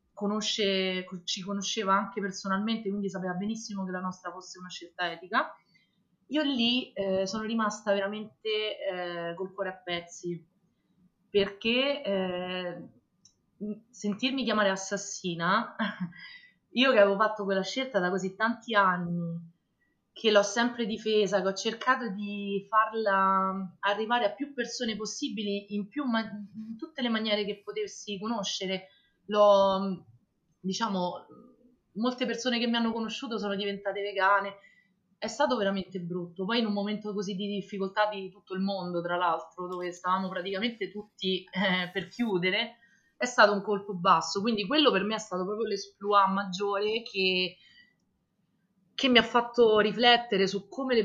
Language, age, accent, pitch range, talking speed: Italian, 30-49, native, 190-220 Hz, 145 wpm